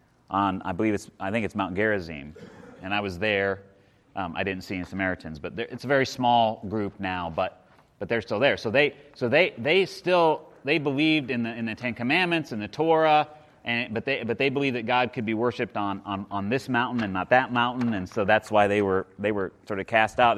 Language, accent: English, American